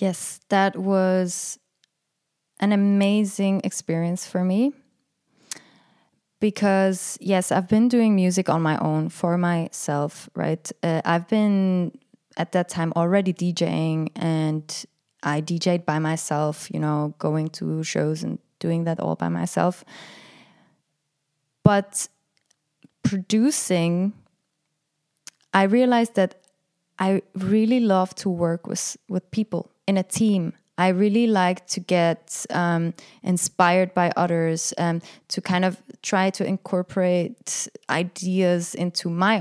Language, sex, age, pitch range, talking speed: English, female, 20-39, 165-195 Hz, 120 wpm